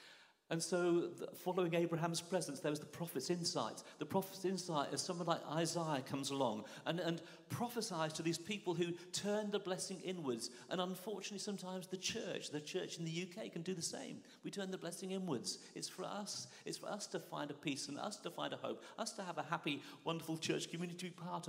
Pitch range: 125-185 Hz